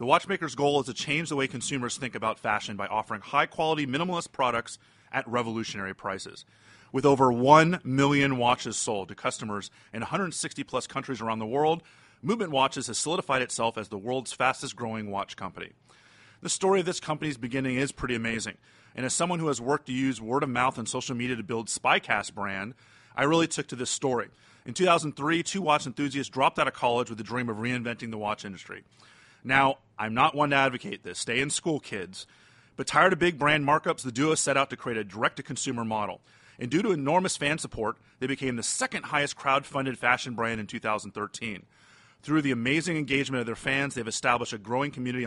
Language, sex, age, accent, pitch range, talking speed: English, male, 30-49, American, 115-145 Hz, 195 wpm